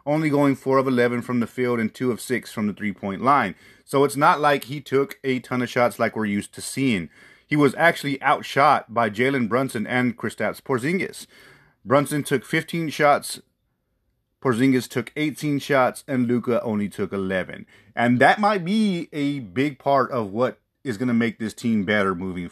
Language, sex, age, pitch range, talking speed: English, male, 30-49, 115-145 Hz, 190 wpm